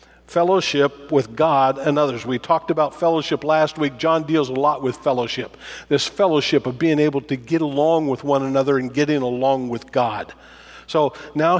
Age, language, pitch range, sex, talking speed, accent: 50-69, English, 135-170 Hz, male, 180 wpm, American